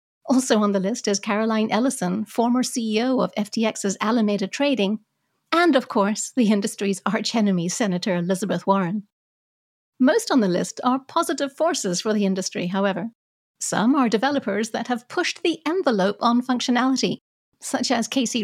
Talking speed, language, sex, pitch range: 150 wpm, English, female, 205-265 Hz